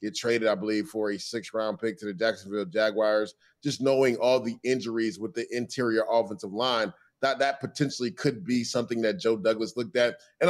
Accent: American